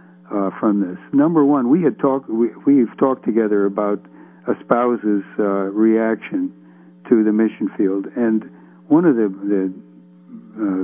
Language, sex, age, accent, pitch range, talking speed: English, male, 60-79, American, 95-125 Hz, 150 wpm